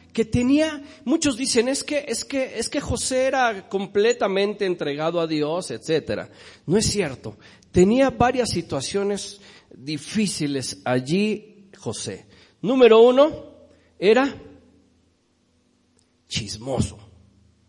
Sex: male